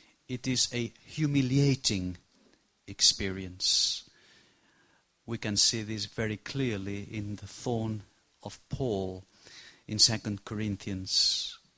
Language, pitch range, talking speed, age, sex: English, 105-135 Hz, 95 wpm, 50-69, male